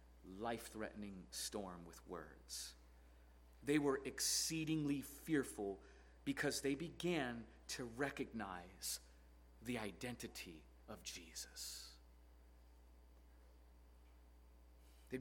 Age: 40-59